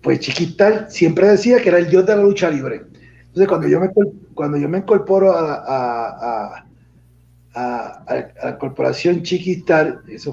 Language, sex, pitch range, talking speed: Spanish, male, 125-185 Hz, 175 wpm